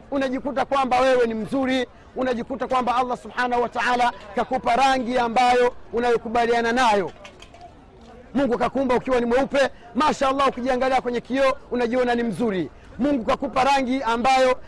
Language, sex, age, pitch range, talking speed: Swahili, male, 40-59, 235-270 Hz, 135 wpm